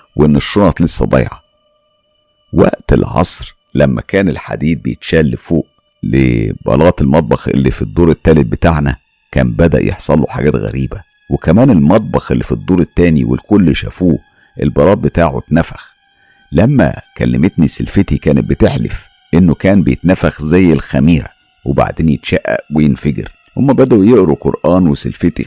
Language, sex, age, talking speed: Arabic, male, 50-69, 125 wpm